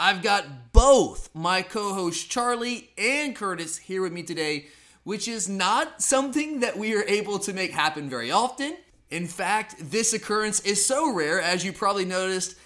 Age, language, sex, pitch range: 20-39, English, male, 160-215 Hz